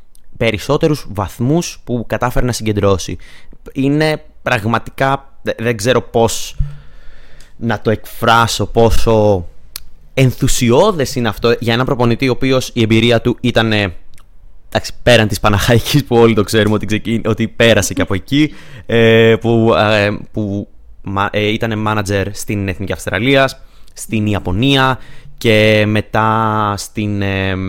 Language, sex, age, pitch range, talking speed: Greek, male, 20-39, 105-135 Hz, 110 wpm